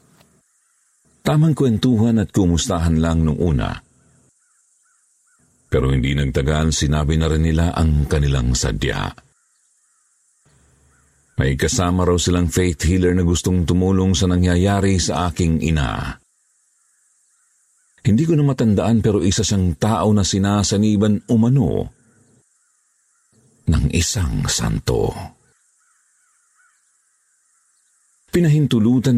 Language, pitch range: Filipino, 75-105 Hz